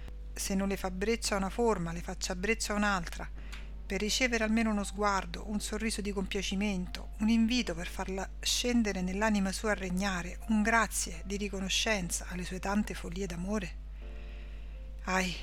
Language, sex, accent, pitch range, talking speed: Italian, female, native, 180-210 Hz, 150 wpm